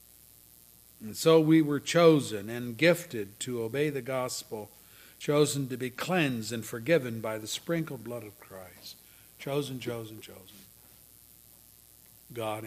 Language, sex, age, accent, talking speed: English, male, 60-79, American, 130 wpm